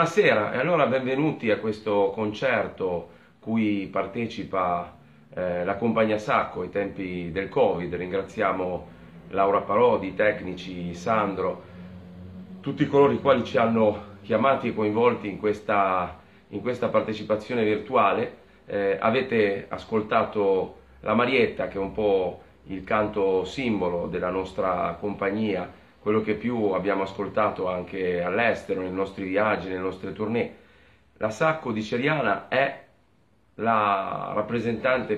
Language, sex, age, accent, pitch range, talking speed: Italian, male, 40-59, native, 95-115 Hz, 125 wpm